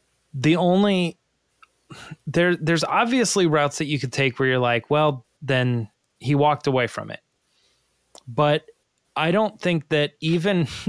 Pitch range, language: 130-170 Hz, English